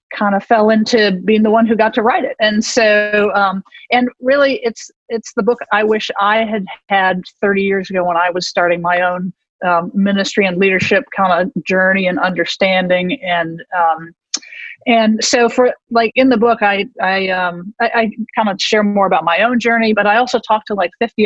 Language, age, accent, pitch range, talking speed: English, 40-59, American, 195-230 Hz, 205 wpm